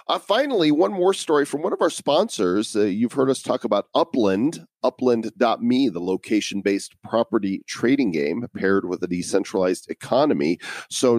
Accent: American